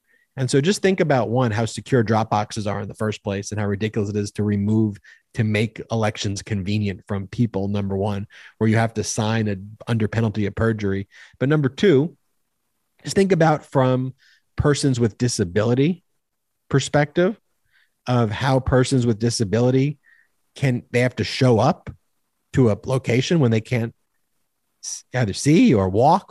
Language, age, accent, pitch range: English, 40-59, American, 110-140 Hz